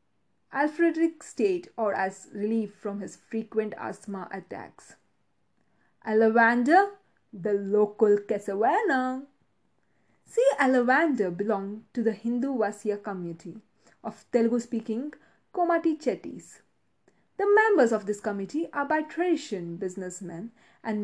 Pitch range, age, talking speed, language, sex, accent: 195-275 Hz, 20-39, 105 wpm, English, female, Indian